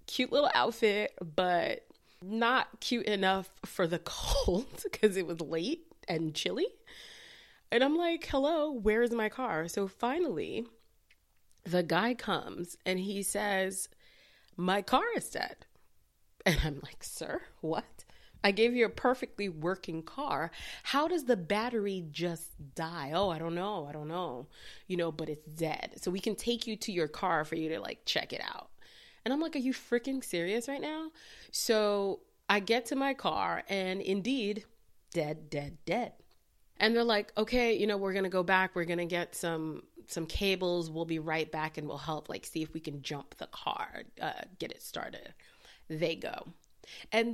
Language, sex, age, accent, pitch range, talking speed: English, female, 20-39, American, 170-235 Hz, 180 wpm